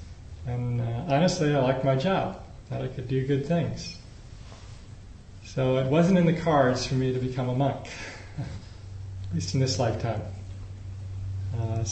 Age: 40-59